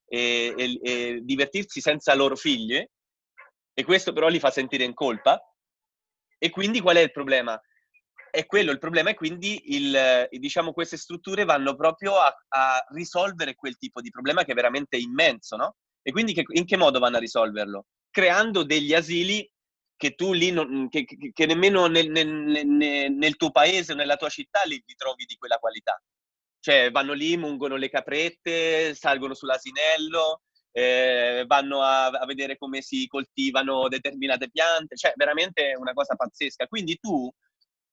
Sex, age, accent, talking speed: male, 30-49, native, 165 wpm